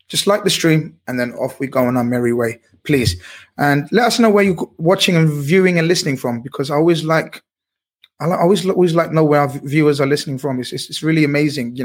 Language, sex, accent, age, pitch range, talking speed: English, male, British, 20-39, 140-185 Hz, 250 wpm